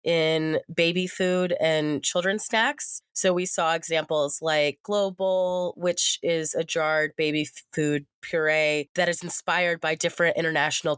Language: English